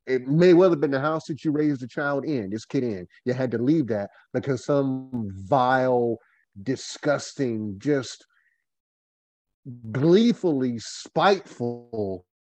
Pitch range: 105-145 Hz